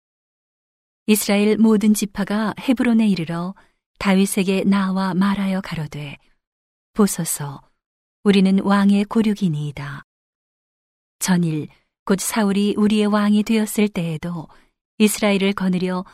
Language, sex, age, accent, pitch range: Korean, female, 40-59, native, 175-210 Hz